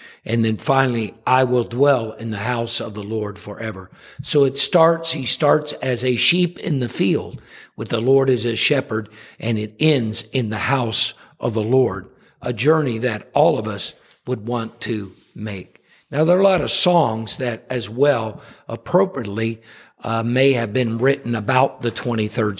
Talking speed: 180 wpm